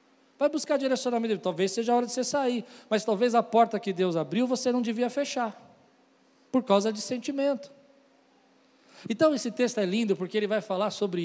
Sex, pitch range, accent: male, 175-230 Hz, Brazilian